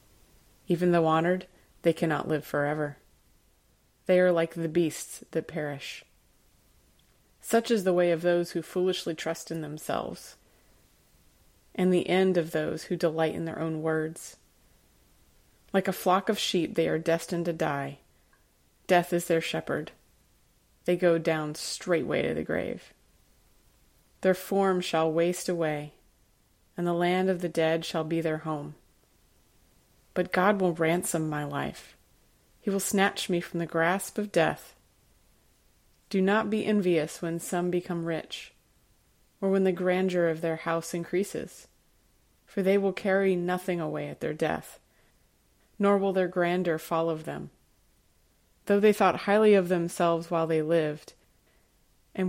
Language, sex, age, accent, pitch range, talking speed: English, female, 30-49, American, 160-185 Hz, 150 wpm